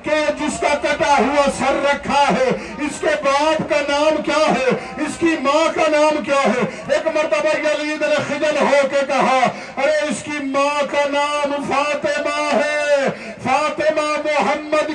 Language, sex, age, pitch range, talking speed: Urdu, male, 50-69, 295-325 Hz, 110 wpm